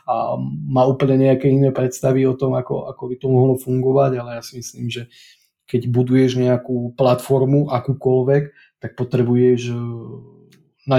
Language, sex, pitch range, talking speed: Slovak, male, 120-135 Hz, 145 wpm